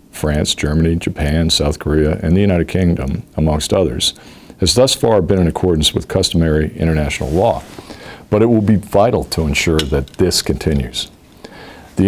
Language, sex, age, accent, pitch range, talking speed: English, male, 50-69, American, 75-100 Hz, 160 wpm